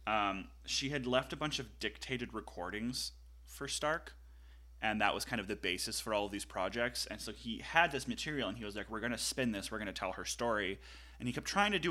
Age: 30-49